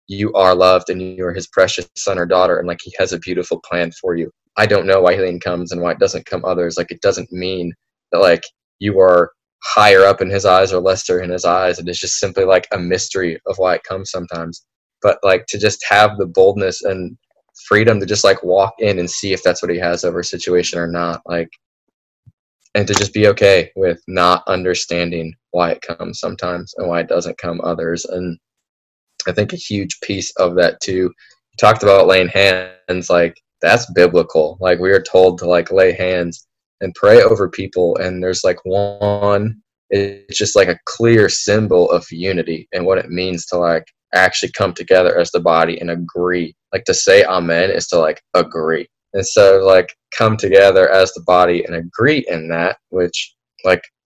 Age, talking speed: 20-39, 205 wpm